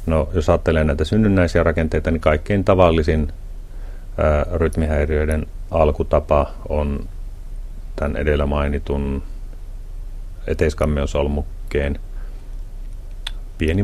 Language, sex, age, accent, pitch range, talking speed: Finnish, male, 30-49, native, 75-90 Hz, 75 wpm